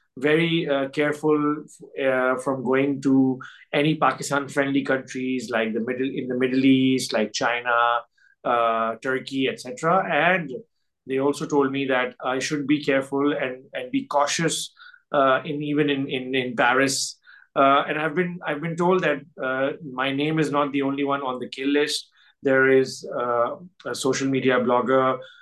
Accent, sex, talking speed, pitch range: Indian, male, 170 wpm, 130-145 Hz